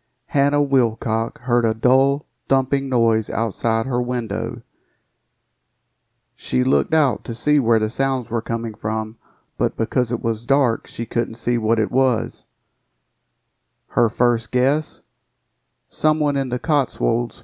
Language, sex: English, male